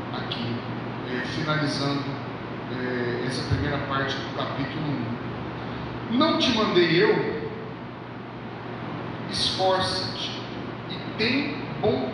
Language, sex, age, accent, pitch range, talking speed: Portuguese, male, 40-59, Brazilian, 140-190 Hz, 90 wpm